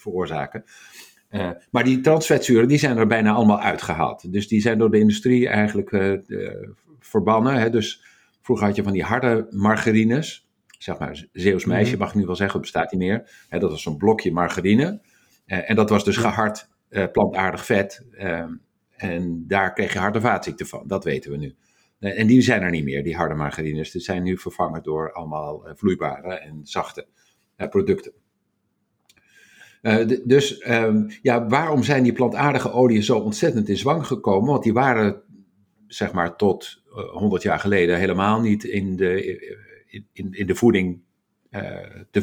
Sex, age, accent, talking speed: male, 50-69, Dutch, 180 wpm